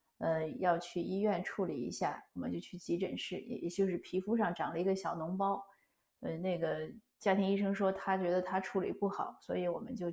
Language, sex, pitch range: Chinese, female, 185-220 Hz